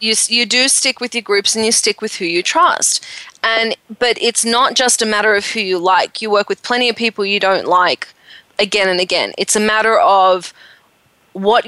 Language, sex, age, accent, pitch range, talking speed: English, female, 20-39, Australian, 195-230 Hz, 215 wpm